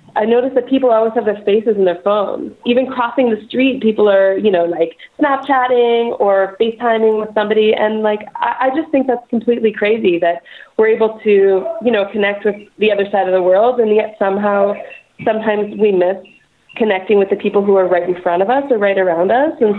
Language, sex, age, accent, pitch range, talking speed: English, female, 30-49, American, 180-220 Hz, 210 wpm